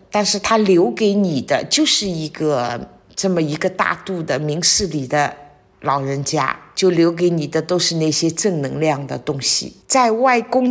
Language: Chinese